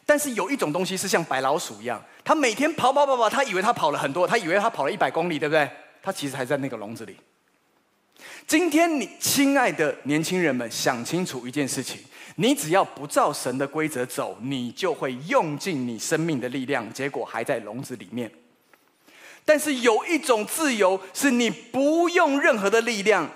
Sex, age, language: male, 30-49, Chinese